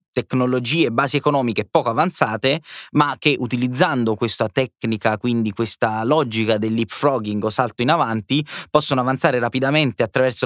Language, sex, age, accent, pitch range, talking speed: Italian, male, 20-39, native, 120-145 Hz, 130 wpm